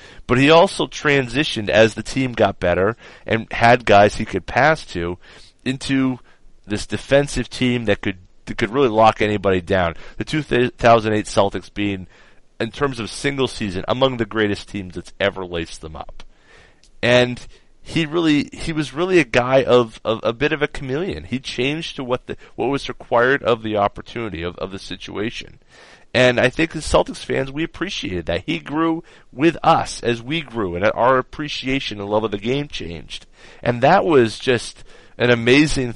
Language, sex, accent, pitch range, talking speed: English, male, American, 105-145 Hz, 180 wpm